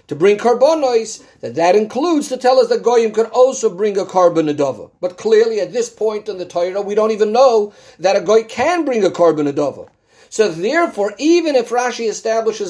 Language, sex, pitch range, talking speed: English, male, 180-265 Hz, 195 wpm